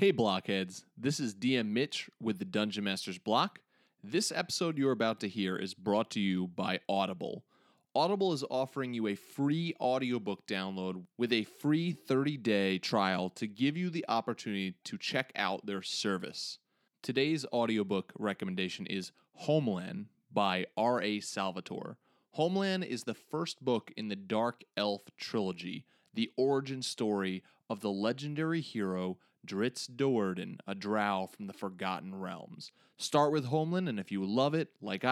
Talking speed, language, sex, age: 150 wpm, English, male, 30-49